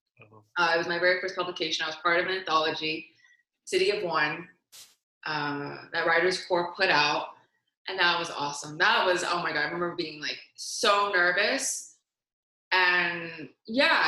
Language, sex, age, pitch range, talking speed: English, female, 20-39, 160-190 Hz, 165 wpm